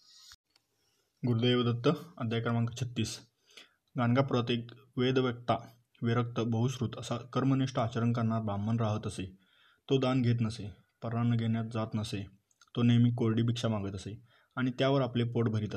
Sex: male